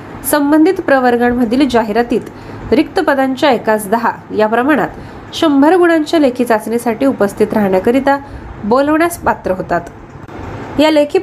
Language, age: Marathi, 20-39